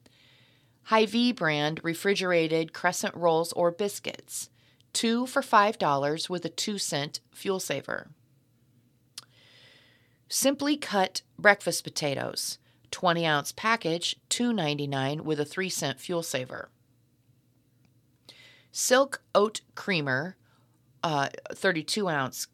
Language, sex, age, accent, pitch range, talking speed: English, female, 40-59, American, 140-190 Hz, 90 wpm